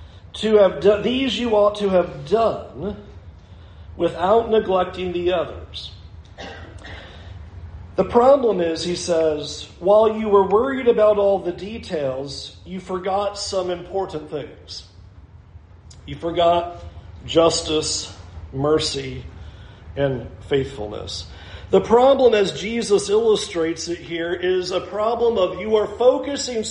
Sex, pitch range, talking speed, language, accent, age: male, 155-240 Hz, 115 wpm, English, American, 40-59